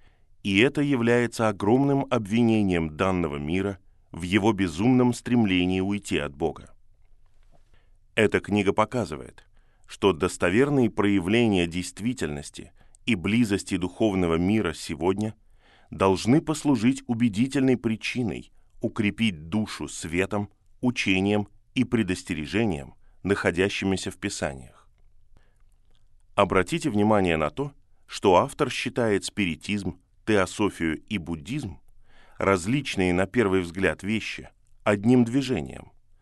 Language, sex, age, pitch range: Russian, male, 20-39, 95-115 Hz